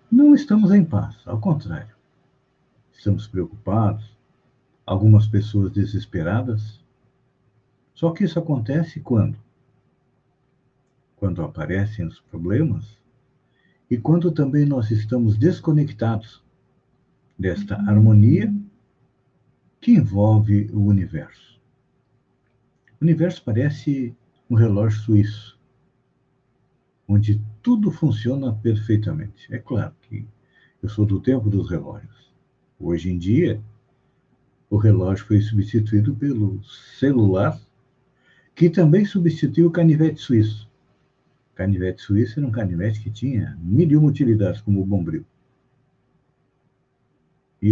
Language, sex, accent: Portuguese, male, Brazilian